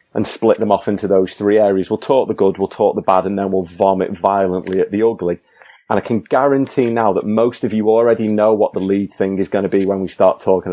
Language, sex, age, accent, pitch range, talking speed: English, male, 30-49, British, 95-110 Hz, 265 wpm